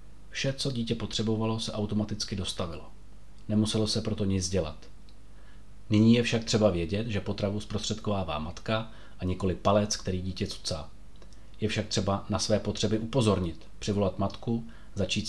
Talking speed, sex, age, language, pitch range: 145 wpm, male, 30-49, Czech, 95-110 Hz